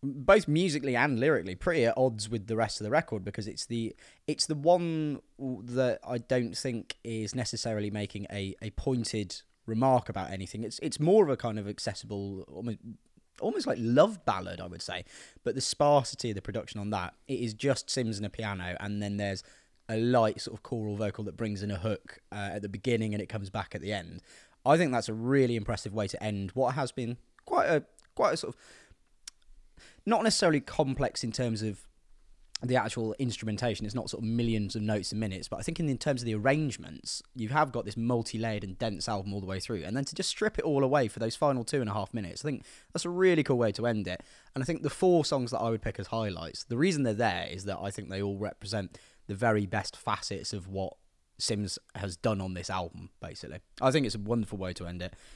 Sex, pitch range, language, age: male, 100-130 Hz, English, 20-39